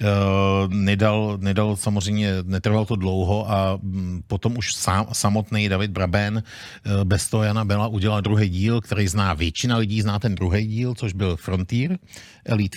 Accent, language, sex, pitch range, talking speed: native, Czech, male, 100-135 Hz, 145 wpm